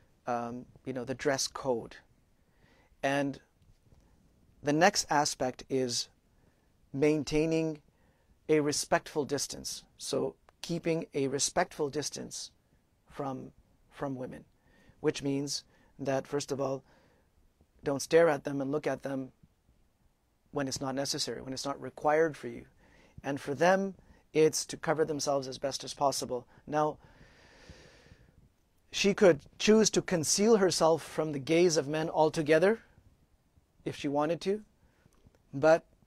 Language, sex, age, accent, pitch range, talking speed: English, male, 40-59, American, 130-160 Hz, 125 wpm